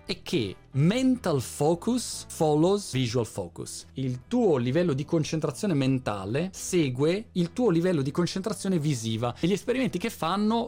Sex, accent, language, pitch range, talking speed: male, native, Italian, 115-175 Hz, 135 wpm